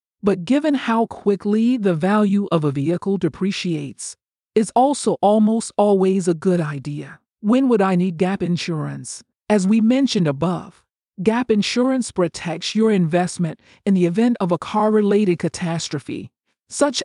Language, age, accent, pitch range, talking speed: English, 40-59, American, 170-220 Hz, 140 wpm